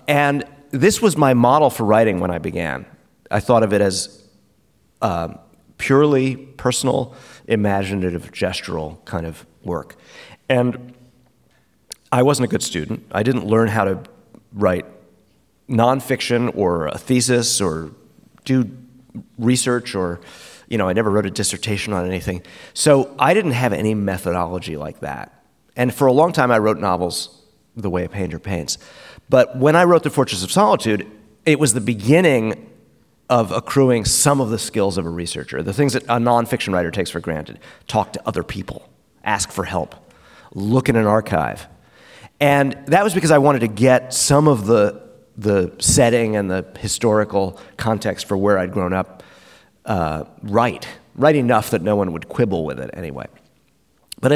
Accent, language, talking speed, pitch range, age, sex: American, English, 165 wpm, 95-130 Hz, 30-49, male